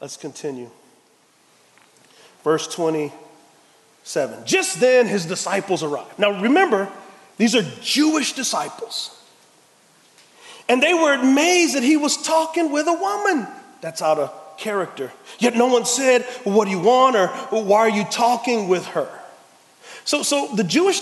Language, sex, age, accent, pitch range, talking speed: English, male, 40-59, American, 205-300 Hz, 140 wpm